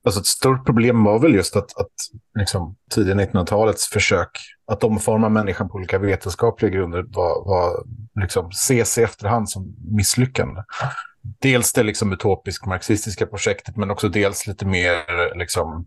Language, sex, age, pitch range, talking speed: English, male, 30-49, 100-120 Hz, 145 wpm